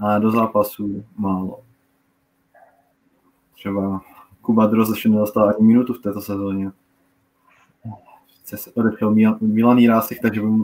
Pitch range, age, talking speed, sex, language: 95-115 Hz, 20-39, 115 wpm, male, Czech